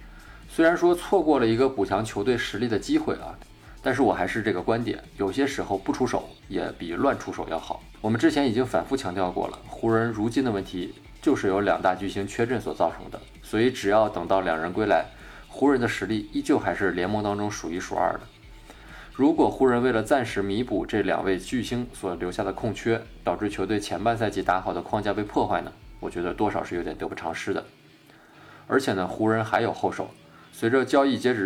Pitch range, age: 100-125 Hz, 20-39